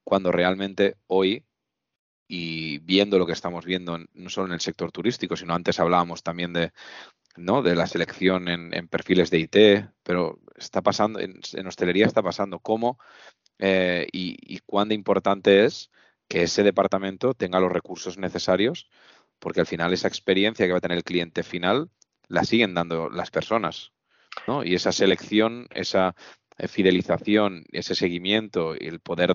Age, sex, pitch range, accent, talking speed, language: 20-39, male, 85-100 Hz, Spanish, 165 wpm, Spanish